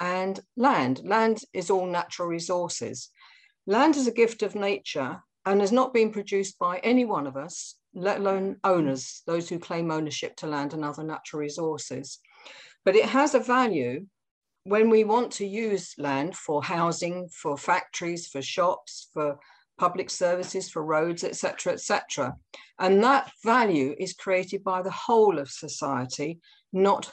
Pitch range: 160-205 Hz